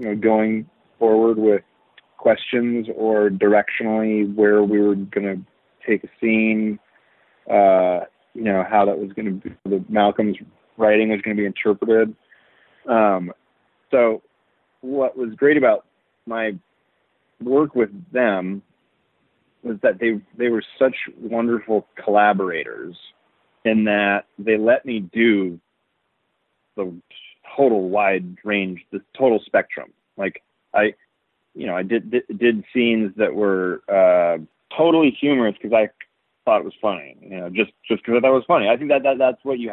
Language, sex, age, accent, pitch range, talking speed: English, male, 30-49, American, 100-115 Hz, 150 wpm